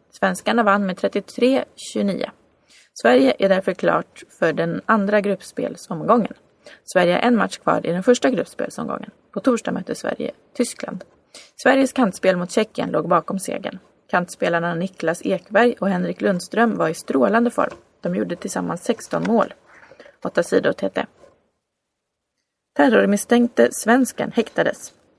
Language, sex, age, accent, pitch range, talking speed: Swedish, female, 20-39, native, 180-255 Hz, 130 wpm